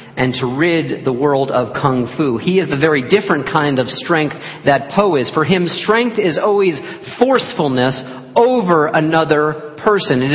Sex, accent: male, American